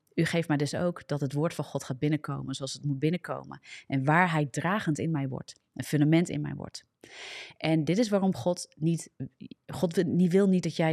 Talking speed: 215 wpm